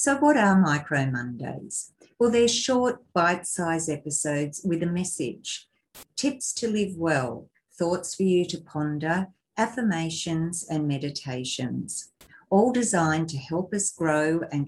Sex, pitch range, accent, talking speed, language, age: female, 150-190 Hz, Australian, 130 wpm, English, 50-69